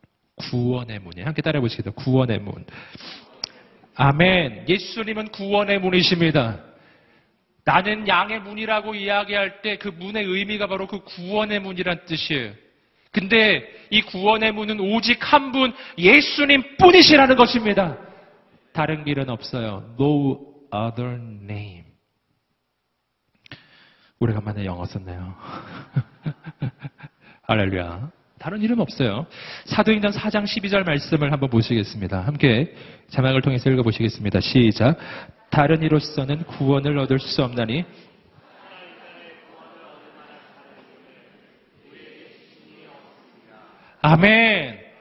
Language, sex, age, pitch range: Korean, male, 40-59, 125-195 Hz